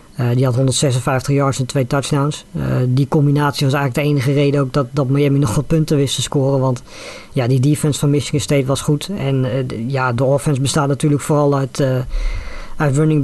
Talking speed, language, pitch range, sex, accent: 210 wpm, Dutch, 135-145 Hz, female, Dutch